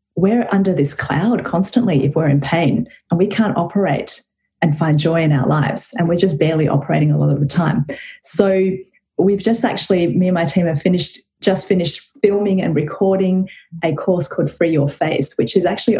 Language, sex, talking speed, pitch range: English, female, 200 wpm, 165-200 Hz